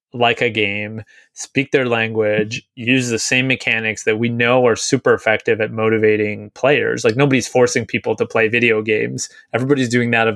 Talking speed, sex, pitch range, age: 180 wpm, male, 110-125 Hz, 20-39